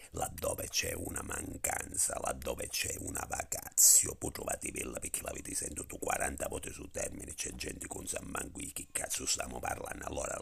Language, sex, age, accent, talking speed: Italian, male, 50-69, native, 155 wpm